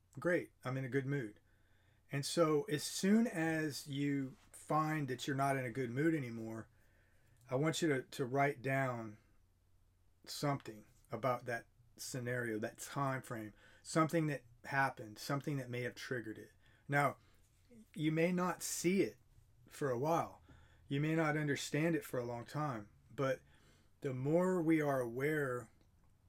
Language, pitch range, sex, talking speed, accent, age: English, 105-145 Hz, male, 155 wpm, American, 30-49